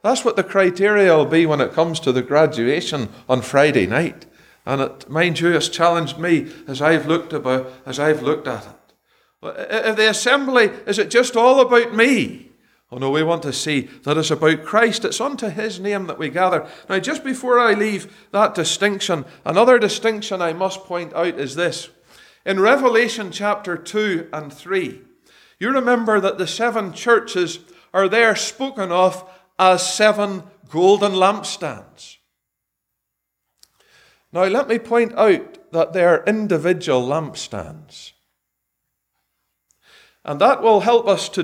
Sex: male